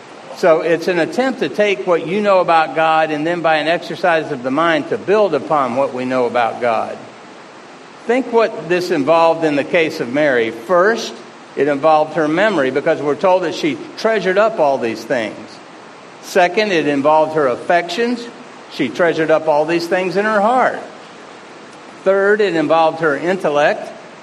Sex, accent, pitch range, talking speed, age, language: male, American, 155-205 Hz, 175 wpm, 60-79, English